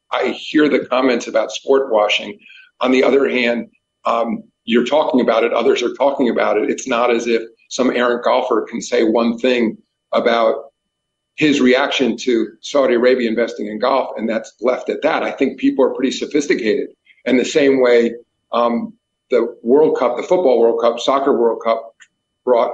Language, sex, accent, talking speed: English, male, American, 180 wpm